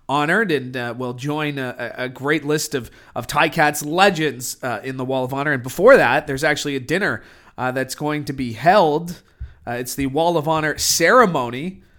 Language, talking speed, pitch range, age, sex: English, 195 wpm, 130-170 Hz, 30-49, male